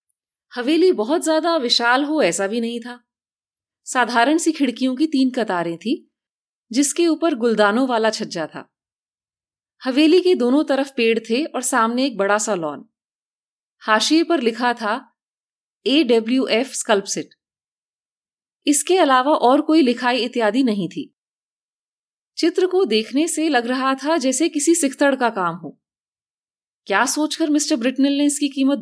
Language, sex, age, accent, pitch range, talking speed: Hindi, female, 30-49, native, 225-310 Hz, 145 wpm